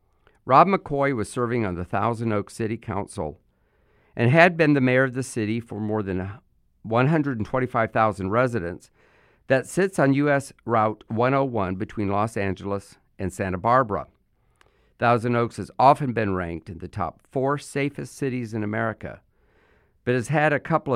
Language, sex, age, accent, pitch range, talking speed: English, male, 50-69, American, 105-140 Hz, 155 wpm